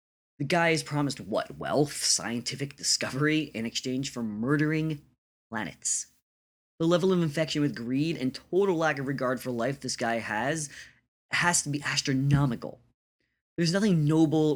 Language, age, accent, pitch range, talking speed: English, 20-39, American, 95-145 Hz, 150 wpm